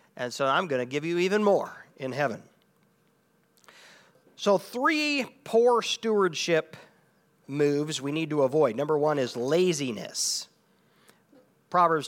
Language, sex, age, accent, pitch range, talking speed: English, male, 40-59, American, 150-225 Hz, 125 wpm